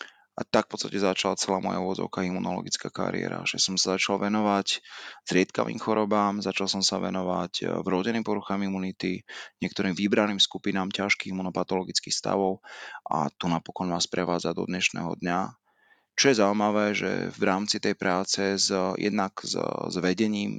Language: Slovak